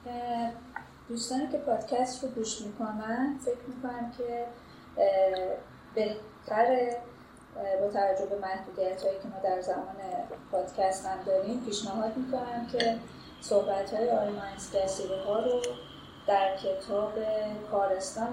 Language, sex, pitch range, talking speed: Persian, female, 195-235 Hz, 100 wpm